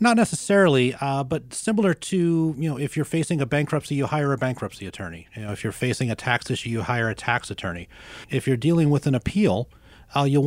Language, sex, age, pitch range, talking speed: English, male, 30-49, 110-140 Hz, 225 wpm